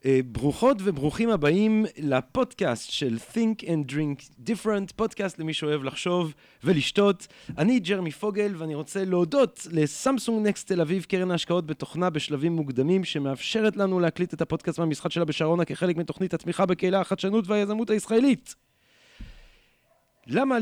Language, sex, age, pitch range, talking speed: Hebrew, male, 40-59, 145-195 Hz, 130 wpm